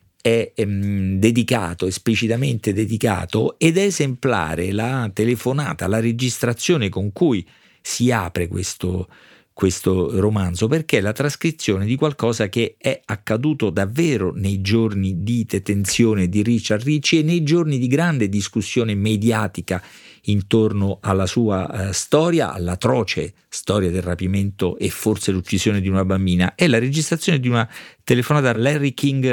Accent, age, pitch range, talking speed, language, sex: native, 50-69, 100-140 Hz, 135 wpm, Italian, male